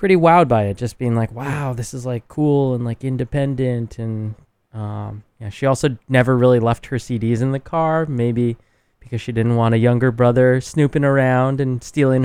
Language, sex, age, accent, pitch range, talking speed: English, male, 20-39, American, 110-130 Hz, 195 wpm